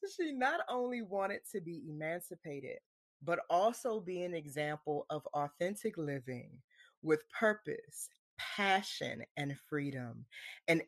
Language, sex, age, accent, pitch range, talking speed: English, female, 20-39, American, 150-195 Hz, 115 wpm